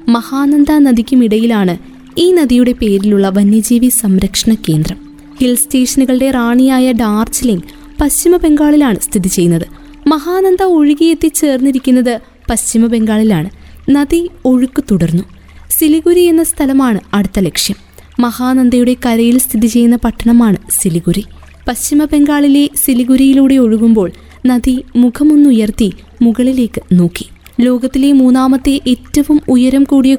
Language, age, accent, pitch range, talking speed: Malayalam, 20-39, native, 230-285 Hz, 90 wpm